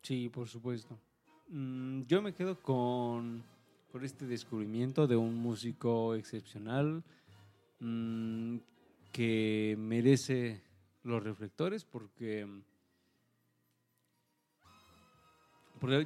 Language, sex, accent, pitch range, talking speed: Spanish, male, Mexican, 115-145 Hz, 80 wpm